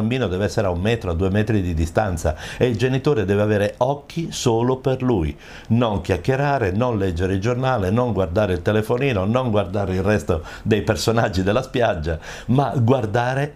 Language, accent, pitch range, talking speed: Italian, native, 95-130 Hz, 180 wpm